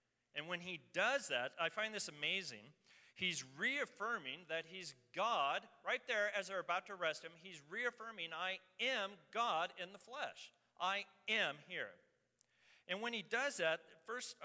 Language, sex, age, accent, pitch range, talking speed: English, male, 40-59, American, 165-215 Hz, 160 wpm